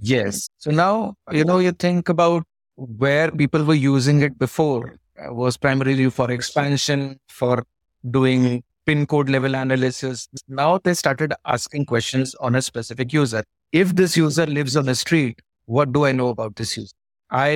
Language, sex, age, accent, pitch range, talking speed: English, male, 50-69, Indian, 125-160 Hz, 165 wpm